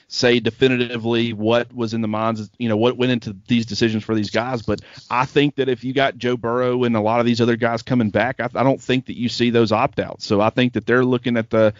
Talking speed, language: 275 wpm, English